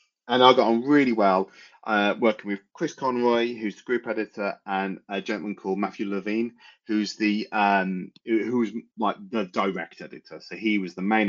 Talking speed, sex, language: 180 wpm, male, English